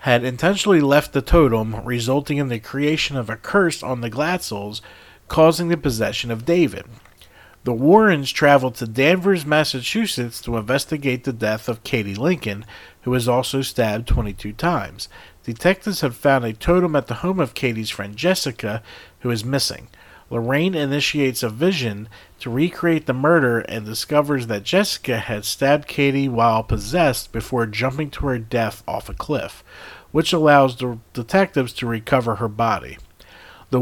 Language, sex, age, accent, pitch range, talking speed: English, male, 50-69, American, 115-150 Hz, 160 wpm